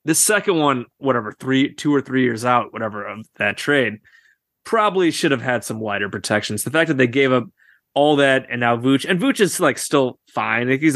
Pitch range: 115-150 Hz